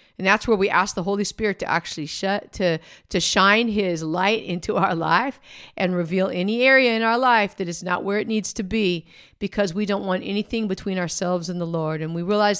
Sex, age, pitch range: female, 50-69, 190-250 Hz